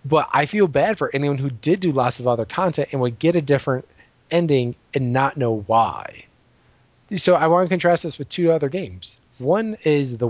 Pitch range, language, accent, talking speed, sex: 120-155 Hz, English, American, 210 wpm, male